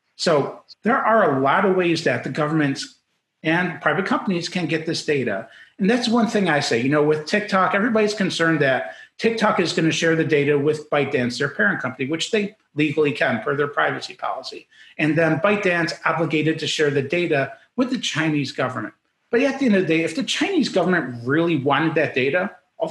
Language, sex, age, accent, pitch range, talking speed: English, male, 40-59, American, 150-190 Hz, 205 wpm